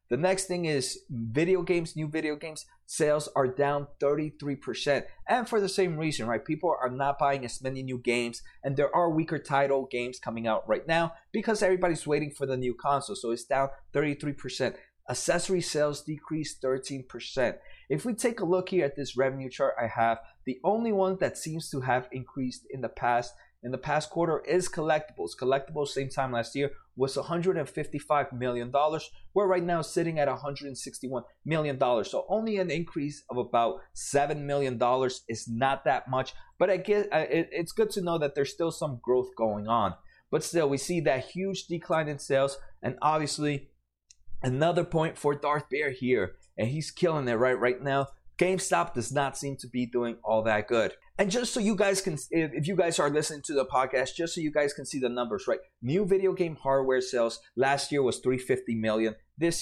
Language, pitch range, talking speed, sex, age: English, 130-165 Hz, 195 wpm, male, 30-49